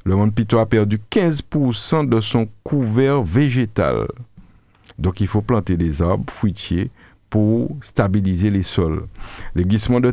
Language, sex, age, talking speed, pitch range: French, male, 50-69, 140 wpm, 95-115 Hz